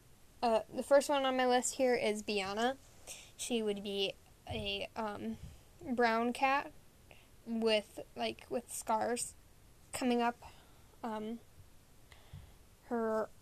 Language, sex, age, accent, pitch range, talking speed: English, female, 10-29, American, 215-245 Hz, 110 wpm